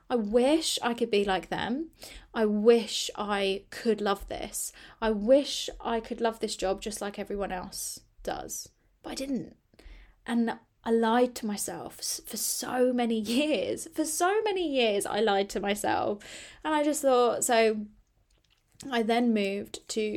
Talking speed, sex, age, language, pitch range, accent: 160 wpm, female, 20-39, English, 200-245 Hz, British